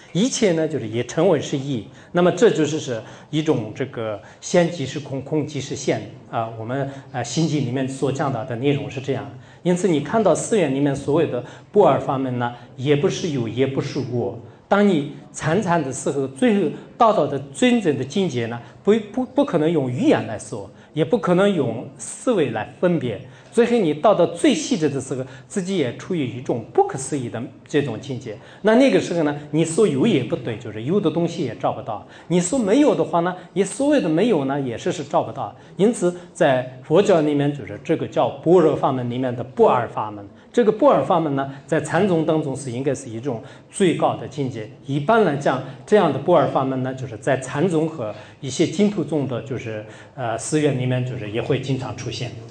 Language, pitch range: English, 125-170 Hz